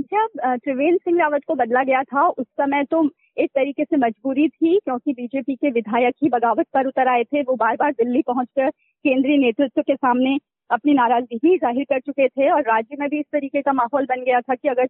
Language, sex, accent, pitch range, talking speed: Hindi, female, native, 255-320 Hz, 220 wpm